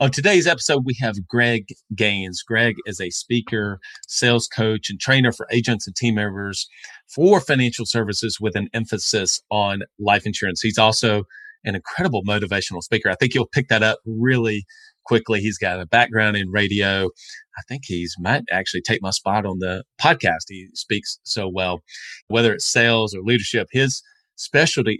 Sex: male